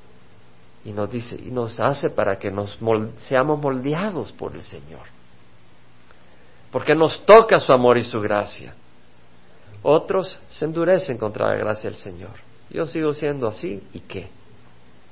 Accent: Mexican